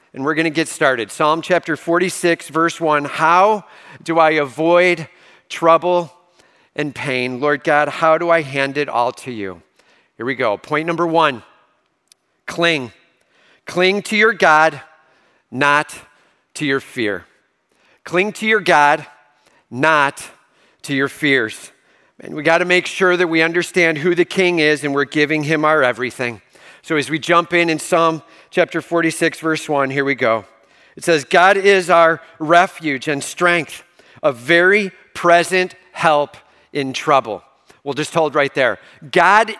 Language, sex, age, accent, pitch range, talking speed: English, male, 40-59, American, 150-180 Hz, 160 wpm